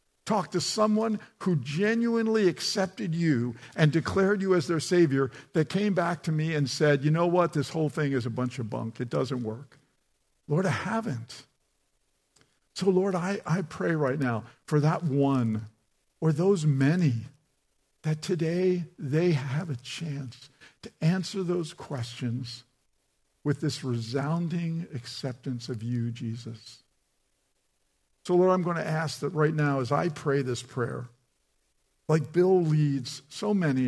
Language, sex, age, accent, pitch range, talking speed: English, male, 50-69, American, 125-170 Hz, 150 wpm